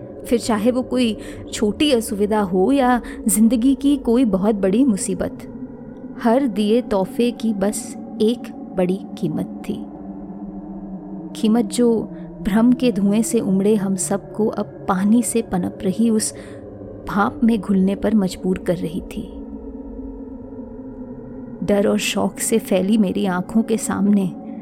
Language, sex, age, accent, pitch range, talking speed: Hindi, female, 20-39, native, 200-255 Hz, 135 wpm